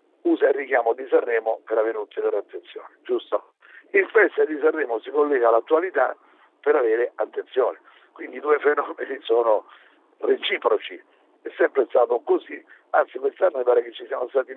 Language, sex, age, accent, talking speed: Italian, male, 50-69, native, 155 wpm